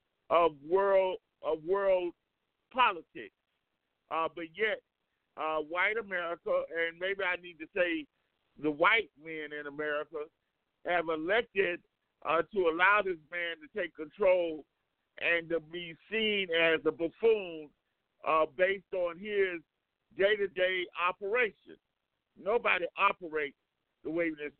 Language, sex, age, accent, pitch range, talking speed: English, male, 50-69, American, 160-205 Hz, 120 wpm